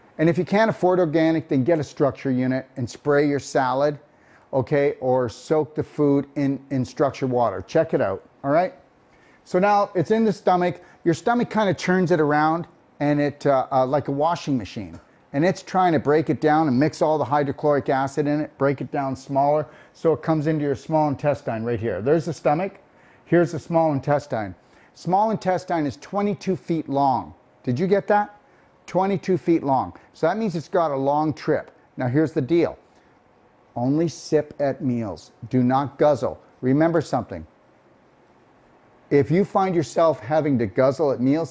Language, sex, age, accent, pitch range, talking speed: English, male, 40-59, American, 130-170 Hz, 185 wpm